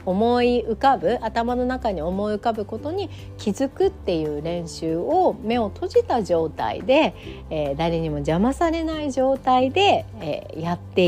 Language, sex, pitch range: Japanese, female, 170-255 Hz